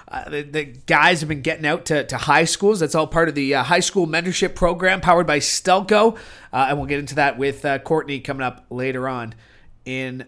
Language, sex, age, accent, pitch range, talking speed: English, male, 30-49, American, 145-175 Hz, 230 wpm